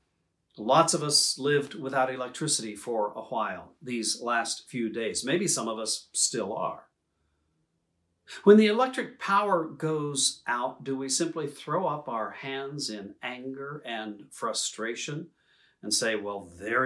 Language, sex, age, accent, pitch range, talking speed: English, male, 50-69, American, 130-180 Hz, 140 wpm